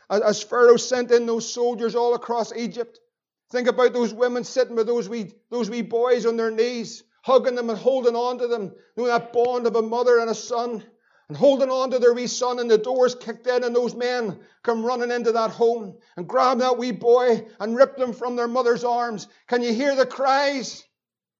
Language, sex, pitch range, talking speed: English, male, 230-265 Hz, 215 wpm